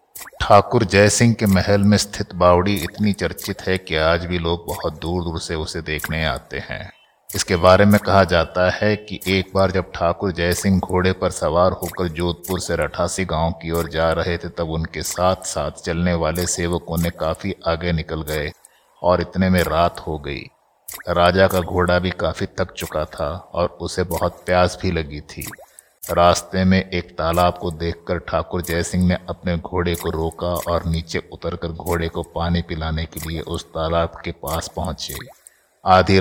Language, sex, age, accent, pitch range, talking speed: Hindi, male, 60-79, native, 85-95 Hz, 180 wpm